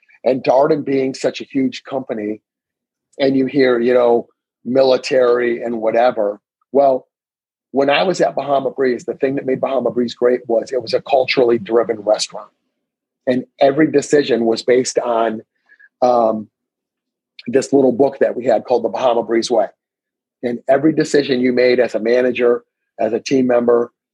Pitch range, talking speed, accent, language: 120-140 Hz, 165 wpm, American, English